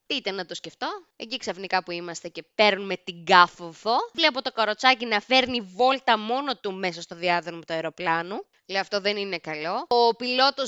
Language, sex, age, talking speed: Greek, female, 20-39, 180 wpm